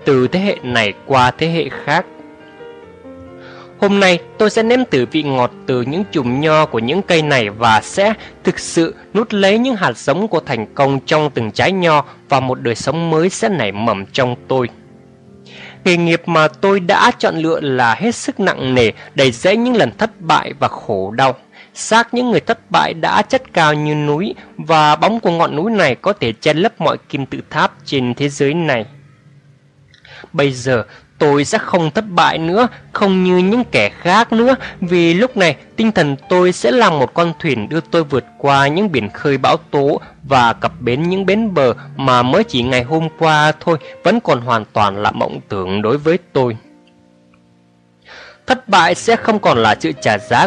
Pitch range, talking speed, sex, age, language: 130-195 Hz, 195 wpm, male, 20-39, Vietnamese